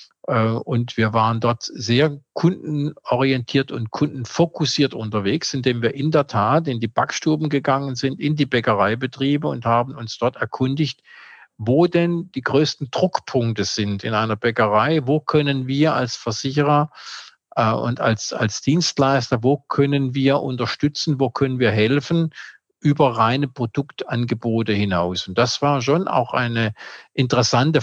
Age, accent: 50-69, German